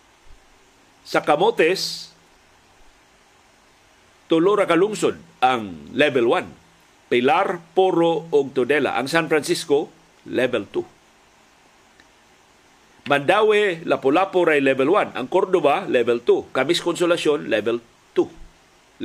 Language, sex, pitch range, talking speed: Filipino, male, 145-190 Hz, 85 wpm